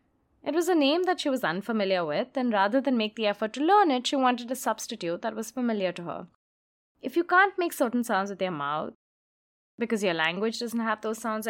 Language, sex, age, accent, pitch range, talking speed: English, female, 20-39, Indian, 200-275 Hz, 225 wpm